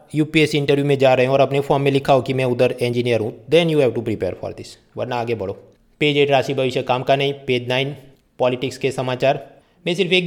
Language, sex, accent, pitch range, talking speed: Hindi, male, native, 135-160 Hz, 245 wpm